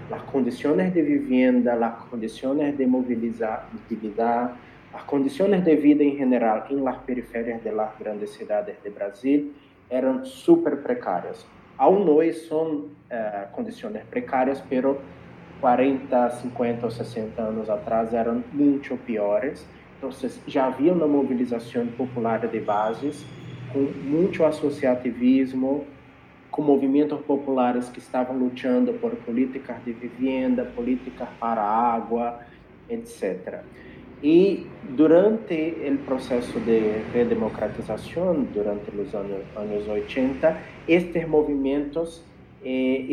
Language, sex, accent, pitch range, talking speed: Spanish, male, Brazilian, 120-150 Hz, 110 wpm